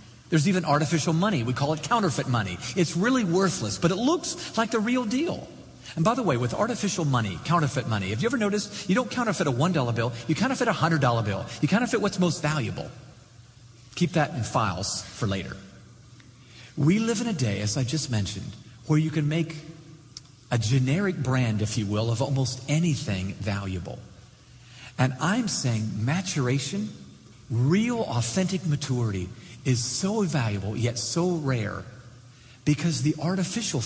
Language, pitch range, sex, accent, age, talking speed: English, 120-170 Hz, male, American, 40-59, 165 wpm